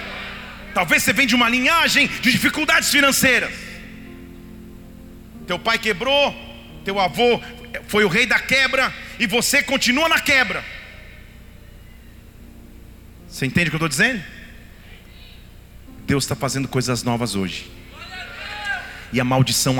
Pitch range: 160-250 Hz